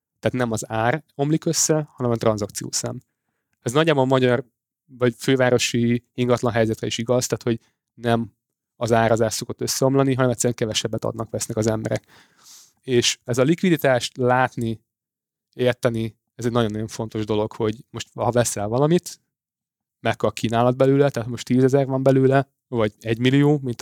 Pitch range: 115-135 Hz